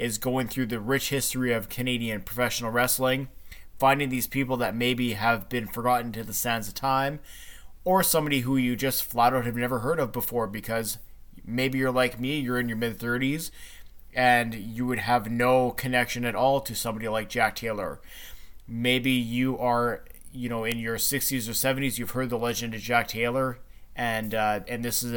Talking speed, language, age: 190 wpm, English, 20-39